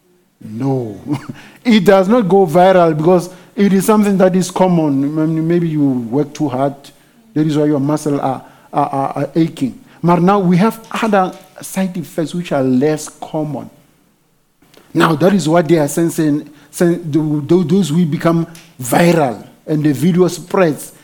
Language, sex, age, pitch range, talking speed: English, male, 50-69, 145-180 Hz, 155 wpm